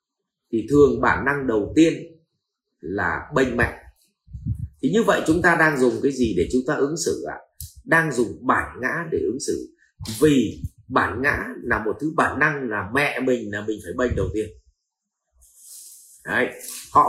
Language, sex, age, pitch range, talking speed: Vietnamese, male, 30-49, 105-165 Hz, 180 wpm